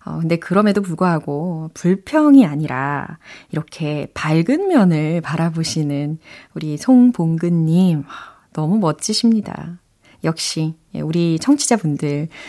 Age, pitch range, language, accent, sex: 30-49, 155-235 Hz, Korean, native, female